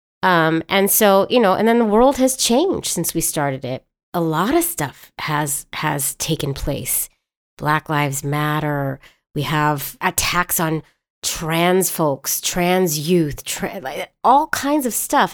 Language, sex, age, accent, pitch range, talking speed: English, female, 30-49, American, 150-205 Hz, 155 wpm